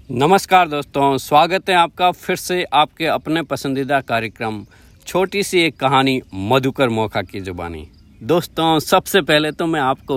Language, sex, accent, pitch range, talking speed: Hindi, male, native, 105-145 Hz, 150 wpm